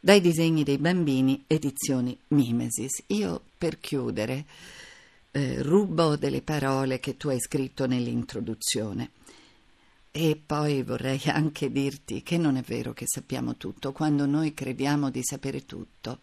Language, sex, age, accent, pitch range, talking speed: Italian, female, 50-69, native, 125-155 Hz, 135 wpm